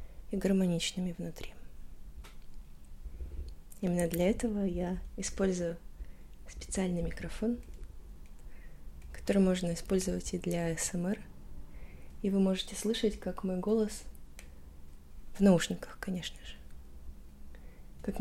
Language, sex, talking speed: Russian, female, 90 wpm